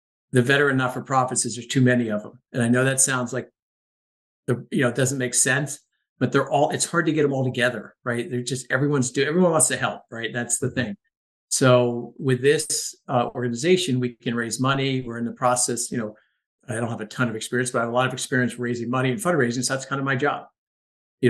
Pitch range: 120-130 Hz